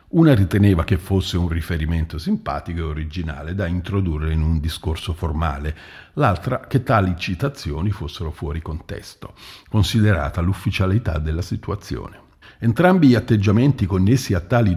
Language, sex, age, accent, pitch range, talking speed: Italian, male, 50-69, native, 85-115 Hz, 130 wpm